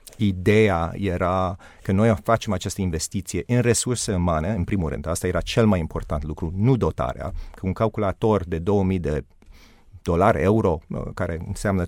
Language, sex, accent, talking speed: Romanian, male, native, 155 wpm